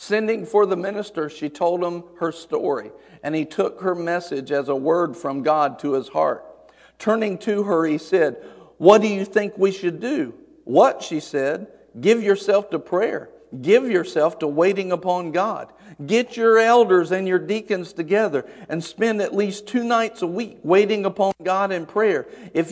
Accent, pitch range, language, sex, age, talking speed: American, 175-230 Hz, English, male, 50-69, 180 wpm